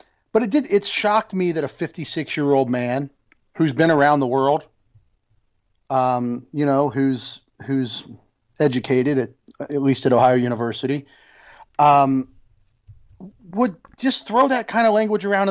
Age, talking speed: 30-49, 140 wpm